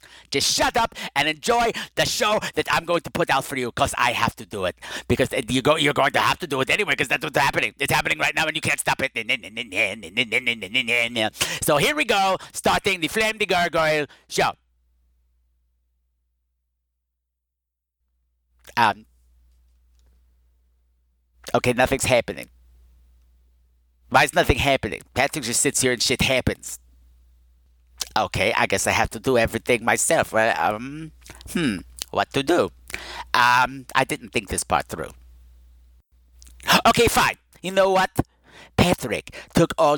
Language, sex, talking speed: English, male, 145 wpm